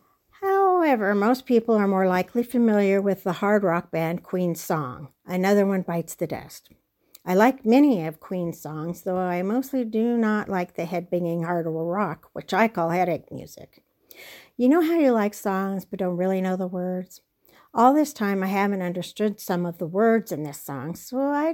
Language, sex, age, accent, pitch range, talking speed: English, female, 60-79, American, 175-235 Hz, 185 wpm